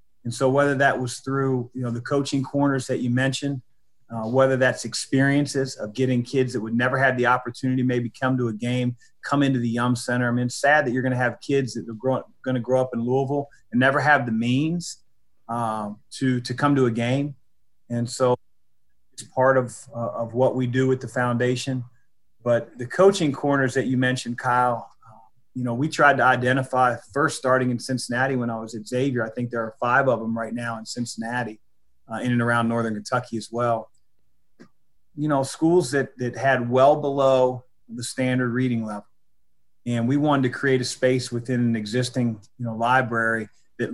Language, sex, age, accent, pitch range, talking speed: English, male, 30-49, American, 120-135 Hz, 205 wpm